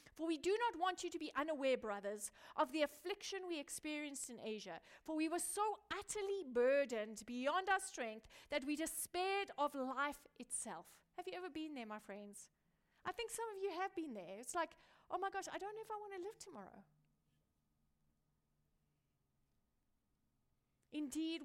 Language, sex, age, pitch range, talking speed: English, female, 30-49, 215-330 Hz, 175 wpm